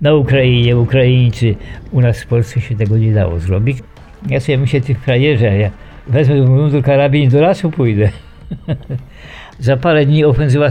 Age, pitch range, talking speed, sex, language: 50-69, 100-130 Hz, 165 wpm, male, Polish